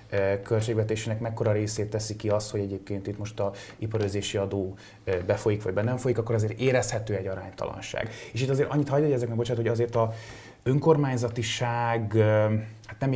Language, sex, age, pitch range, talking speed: Hungarian, male, 20-39, 105-120 Hz, 165 wpm